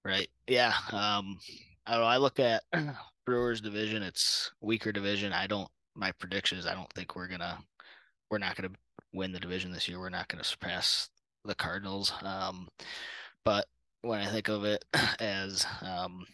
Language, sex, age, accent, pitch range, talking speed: English, male, 20-39, American, 95-105 Hz, 175 wpm